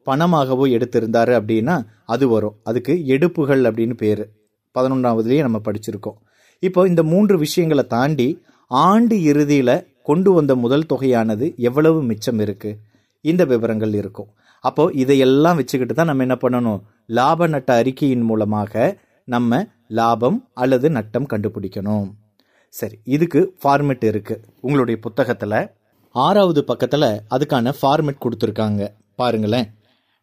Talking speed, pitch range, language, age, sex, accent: 115 wpm, 115-150 Hz, Tamil, 30-49, male, native